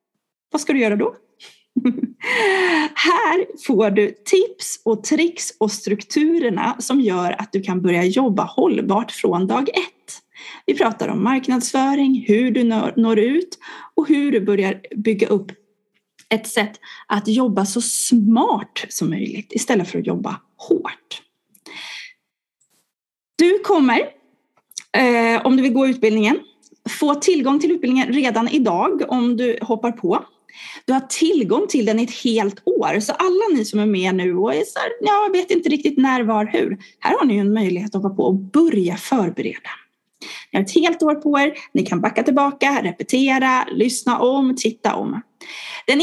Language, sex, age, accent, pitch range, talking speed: Swedish, female, 30-49, native, 220-315 Hz, 160 wpm